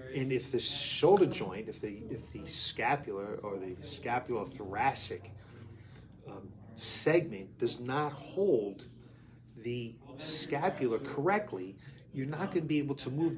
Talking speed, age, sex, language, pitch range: 130 wpm, 40-59, male, English, 125-150 Hz